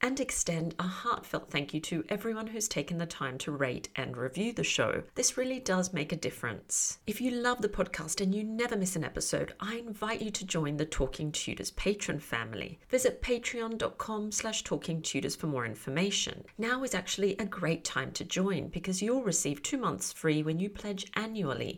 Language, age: English, 40-59